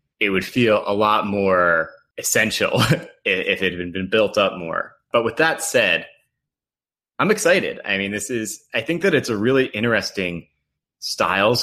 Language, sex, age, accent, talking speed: English, male, 30-49, American, 160 wpm